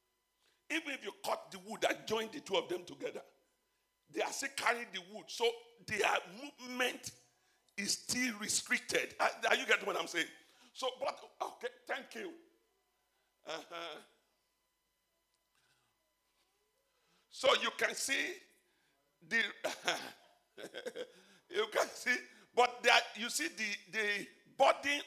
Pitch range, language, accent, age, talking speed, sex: 245-375 Hz, English, Nigerian, 50-69, 125 wpm, male